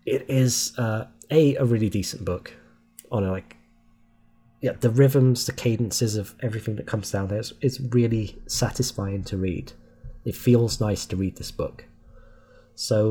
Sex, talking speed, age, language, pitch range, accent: male, 165 wpm, 20-39, English, 100-120 Hz, British